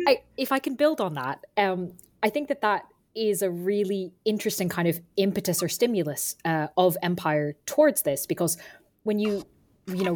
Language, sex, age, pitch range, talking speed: English, female, 10-29, 165-210 Hz, 175 wpm